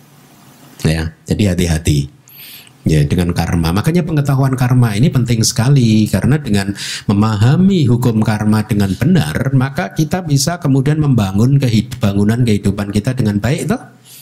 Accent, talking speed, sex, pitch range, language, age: native, 130 wpm, male, 100-140 Hz, Indonesian, 50-69